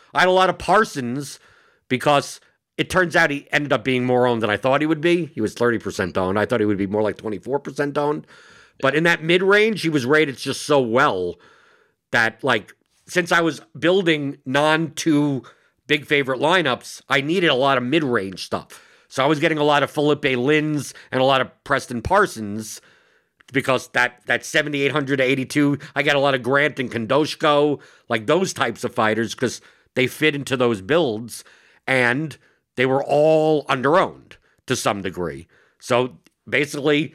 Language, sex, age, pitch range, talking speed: English, male, 50-69, 125-150 Hz, 185 wpm